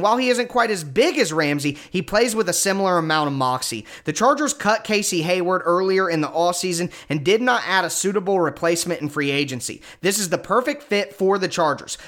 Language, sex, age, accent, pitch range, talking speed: English, male, 30-49, American, 165-220 Hz, 215 wpm